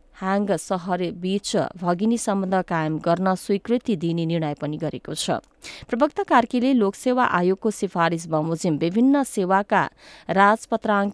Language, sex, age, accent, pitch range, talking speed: English, female, 20-39, Indian, 170-220 Hz, 135 wpm